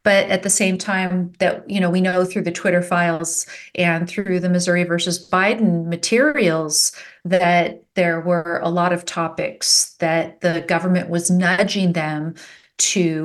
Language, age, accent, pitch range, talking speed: English, 40-59, American, 175-200 Hz, 160 wpm